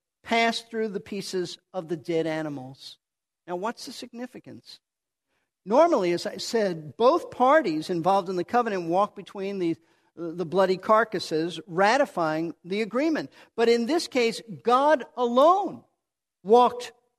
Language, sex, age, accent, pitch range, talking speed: English, male, 50-69, American, 195-245 Hz, 135 wpm